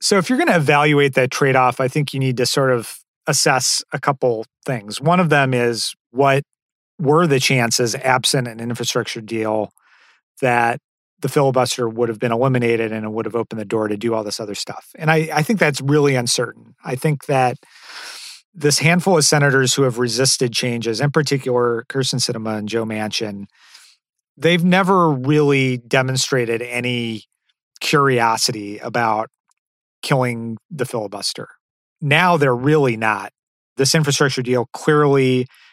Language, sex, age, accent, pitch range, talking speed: English, male, 40-59, American, 120-145 Hz, 160 wpm